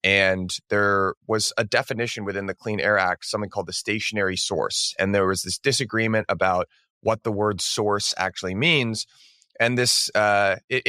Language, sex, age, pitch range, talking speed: English, male, 30-49, 100-120 Hz, 165 wpm